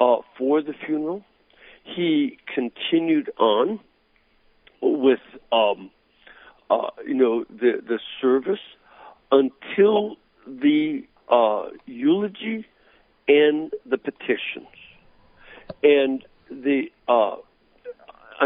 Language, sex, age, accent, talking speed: English, male, 60-79, American, 80 wpm